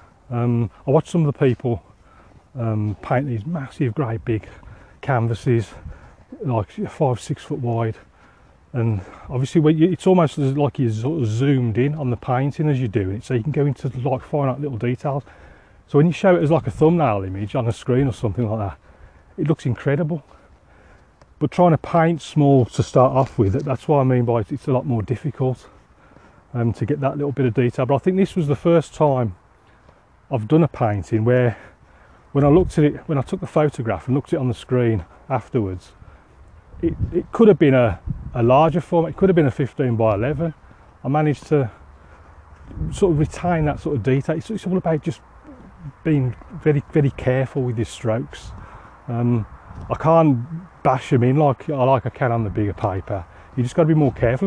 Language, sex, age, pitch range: English, male, 30-49, 110-150 Hz